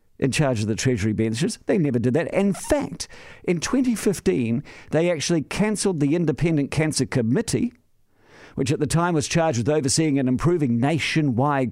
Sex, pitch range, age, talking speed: male, 120-170 Hz, 50-69, 165 wpm